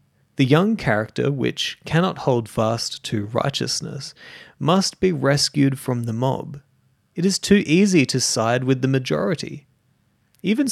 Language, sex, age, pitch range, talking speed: English, male, 30-49, 120-155 Hz, 140 wpm